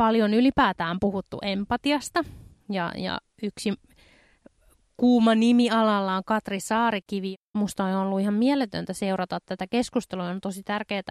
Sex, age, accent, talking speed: female, 20-39, native, 130 wpm